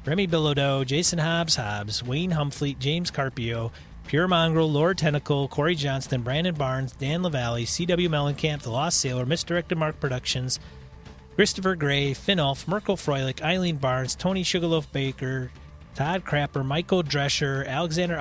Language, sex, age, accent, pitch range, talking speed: English, male, 30-49, American, 135-170 Hz, 140 wpm